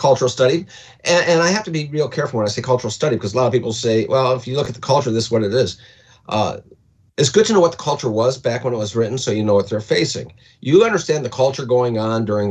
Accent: American